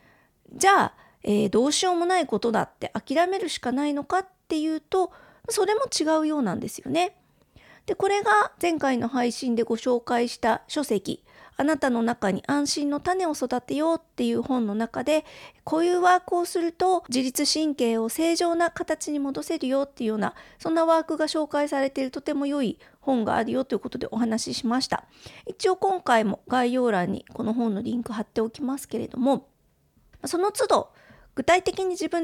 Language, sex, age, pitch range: Japanese, female, 40-59, 235-335 Hz